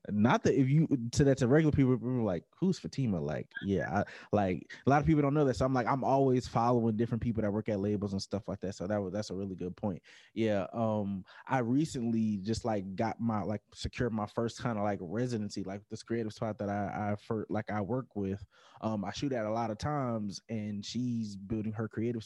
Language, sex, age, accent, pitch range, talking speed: English, male, 20-39, American, 100-120 Hz, 240 wpm